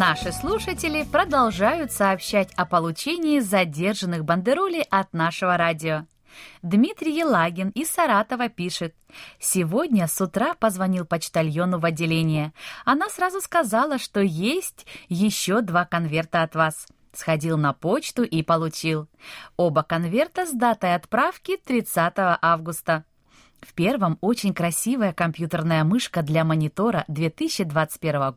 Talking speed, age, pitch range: 115 wpm, 20-39, 165-245 Hz